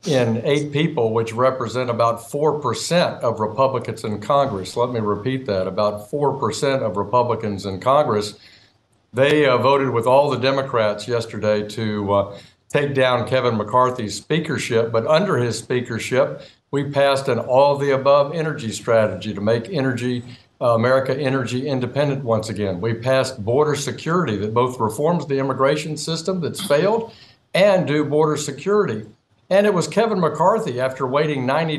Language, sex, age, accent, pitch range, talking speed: English, male, 60-79, American, 115-155 Hz, 155 wpm